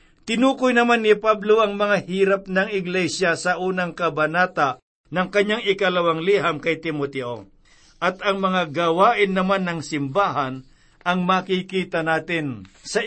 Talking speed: 135 wpm